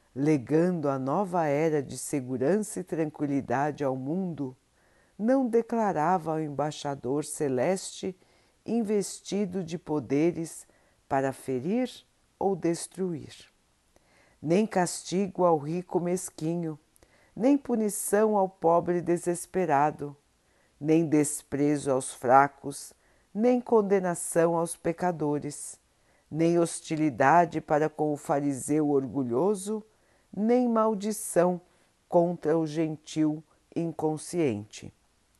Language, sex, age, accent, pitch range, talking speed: Portuguese, female, 50-69, Brazilian, 140-180 Hz, 90 wpm